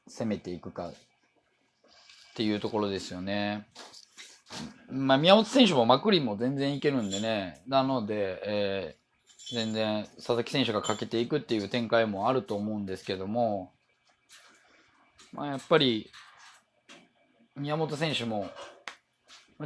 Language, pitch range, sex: Japanese, 100-125 Hz, male